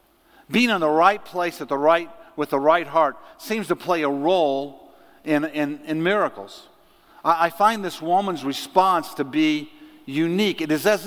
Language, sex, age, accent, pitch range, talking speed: English, male, 50-69, American, 160-220 Hz, 155 wpm